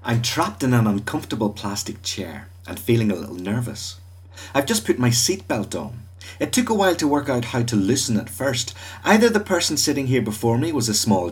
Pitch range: 100-125 Hz